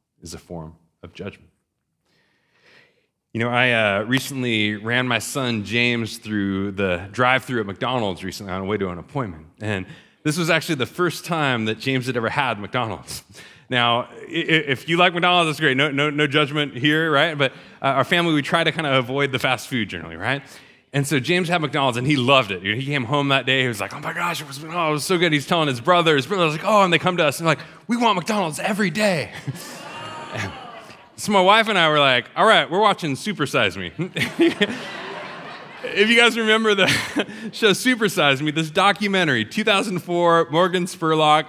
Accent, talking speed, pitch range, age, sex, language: American, 210 wpm, 120-175 Hz, 30-49, male, English